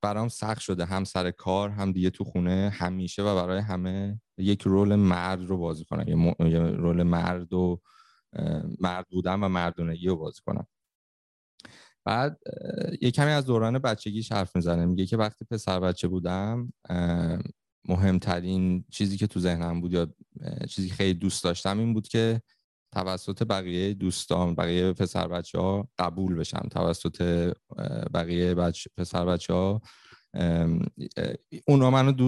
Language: Persian